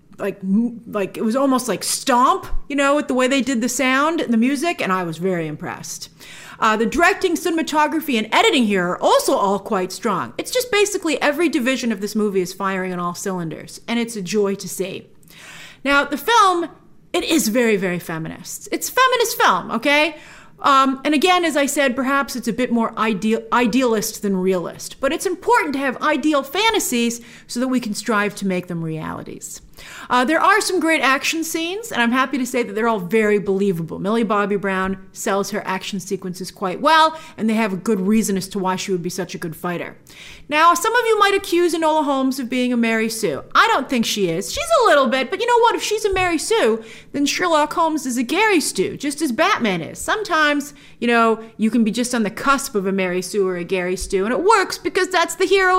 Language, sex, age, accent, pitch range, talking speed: English, female, 40-59, American, 200-315 Hz, 225 wpm